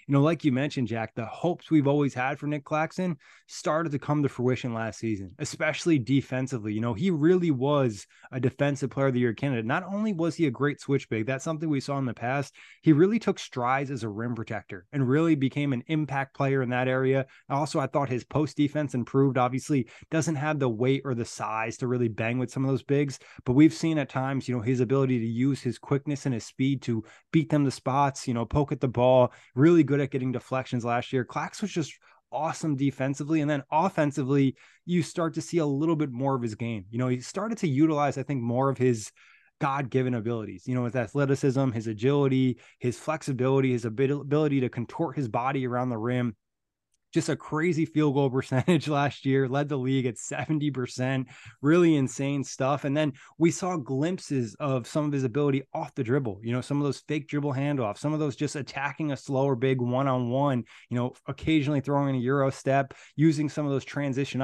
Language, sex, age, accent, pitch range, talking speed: English, male, 20-39, American, 125-150 Hz, 215 wpm